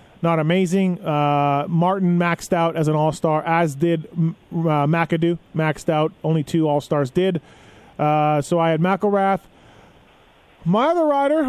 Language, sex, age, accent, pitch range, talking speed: English, male, 30-49, American, 165-215 Hz, 140 wpm